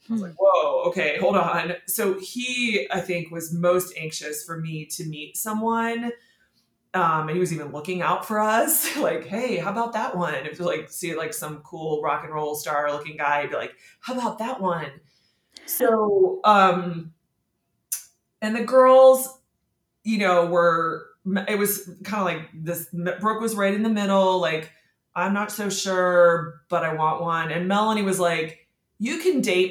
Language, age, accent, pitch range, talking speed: English, 20-39, American, 160-210 Hz, 185 wpm